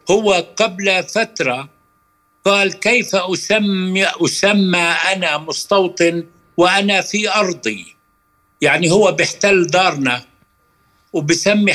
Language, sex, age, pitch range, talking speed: Arabic, male, 60-79, 165-200 Hz, 85 wpm